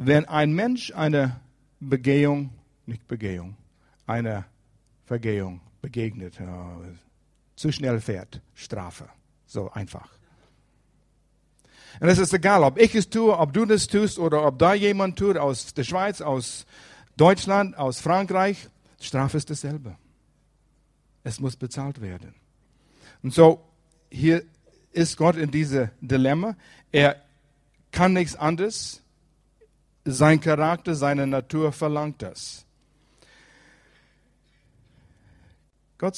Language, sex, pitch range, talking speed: German, male, 120-165 Hz, 110 wpm